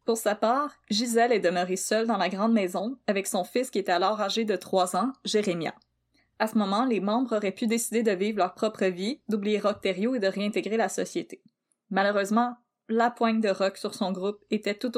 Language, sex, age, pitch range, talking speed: French, female, 20-39, 190-230 Hz, 210 wpm